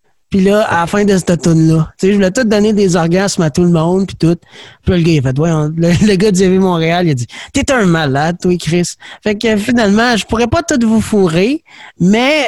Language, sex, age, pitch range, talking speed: French, male, 30-49, 170-240 Hz, 260 wpm